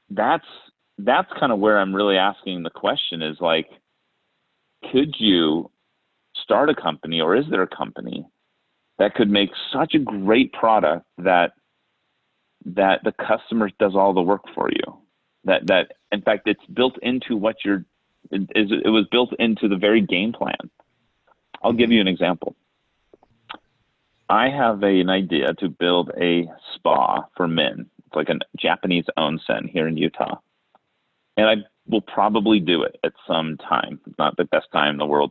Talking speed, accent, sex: 165 wpm, American, male